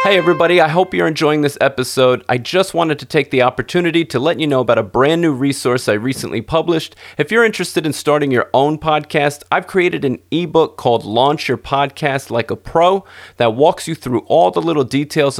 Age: 40-59